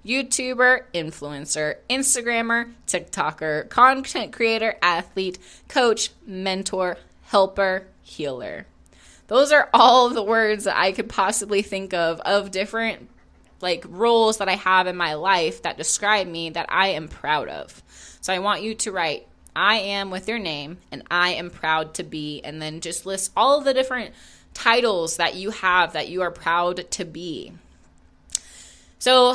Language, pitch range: English, 180-235 Hz